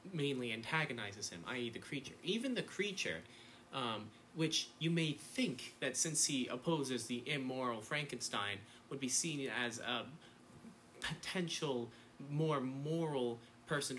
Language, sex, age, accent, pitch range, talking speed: English, male, 30-49, American, 120-160 Hz, 130 wpm